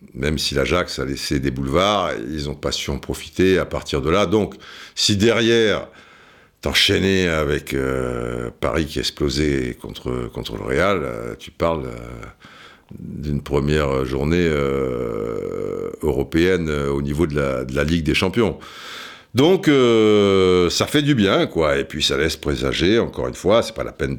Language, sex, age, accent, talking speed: French, male, 60-79, French, 160 wpm